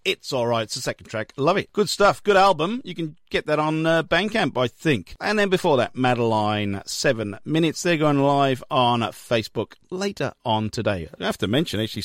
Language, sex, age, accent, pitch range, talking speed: English, male, 40-59, British, 120-180 Hz, 205 wpm